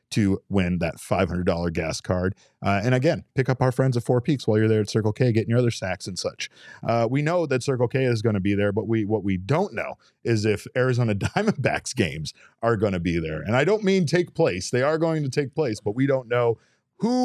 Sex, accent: male, American